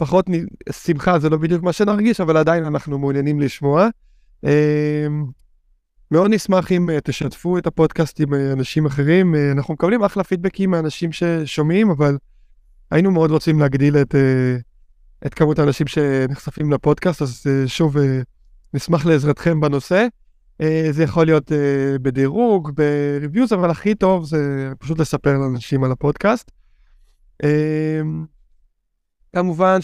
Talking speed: 115 wpm